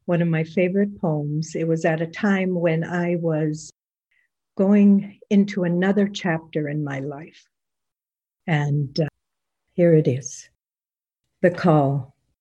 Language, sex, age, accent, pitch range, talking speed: English, female, 60-79, American, 160-205 Hz, 130 wpm